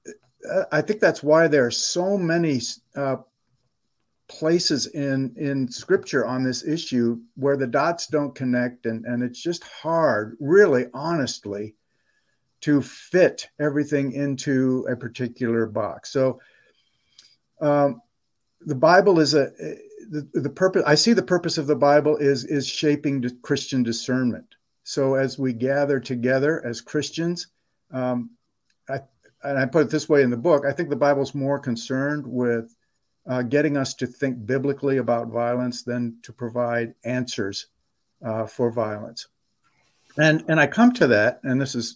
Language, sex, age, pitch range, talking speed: English, male, 50-69, 120-145 Hz, 150 wpm